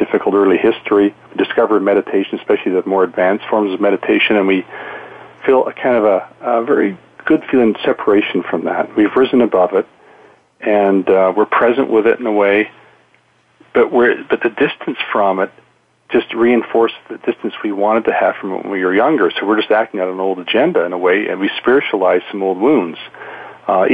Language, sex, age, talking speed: English, male, 40-59, 200 wpm